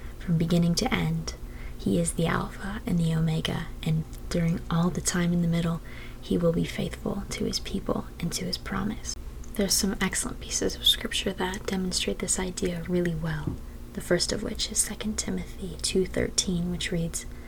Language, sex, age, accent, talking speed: English, female, 20-39, American, 180 wpm